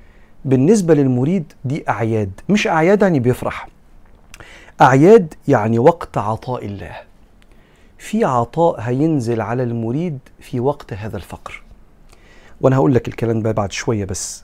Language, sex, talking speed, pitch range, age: Arabic, male, 120 wpm, 110-140 Hz, 40-59